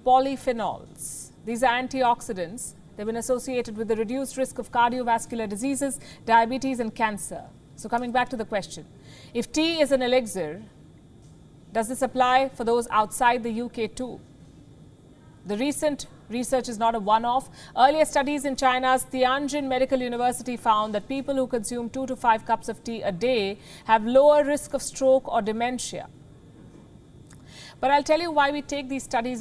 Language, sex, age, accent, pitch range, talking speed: English, female, 40-59, Indian, 215-260 Hz, 165 wpm